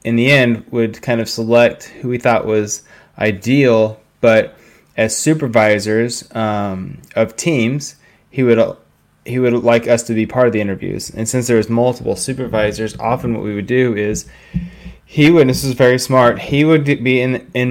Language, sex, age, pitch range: English, male, 20-39, 110-130 Hz